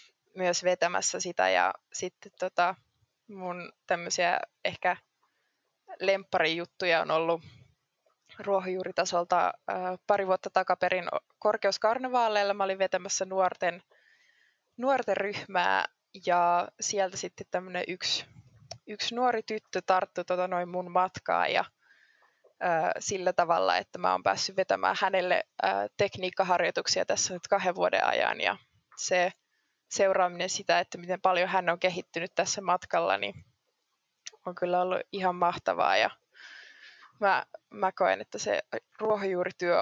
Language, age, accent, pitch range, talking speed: Finnish, 20-39, native, 175-200 Hz, 115 wpm